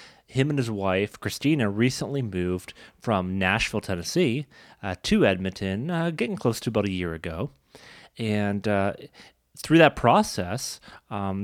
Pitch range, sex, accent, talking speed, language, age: 100-130 Hz, male, American, 140 wpm, English, 30-49